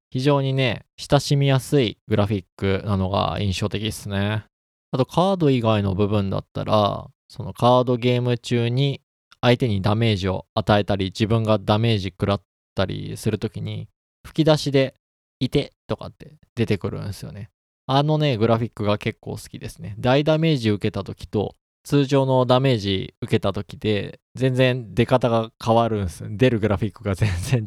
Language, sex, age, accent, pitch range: Japanese, male, 20-39, native, 105-145 Hz